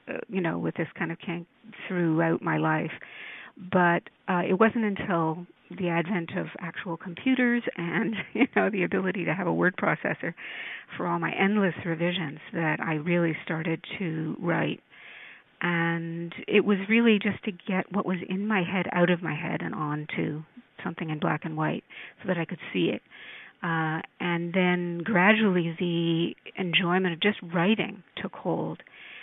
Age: 50-69